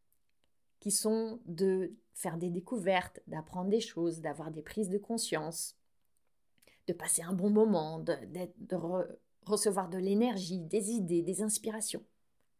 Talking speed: 140 wpm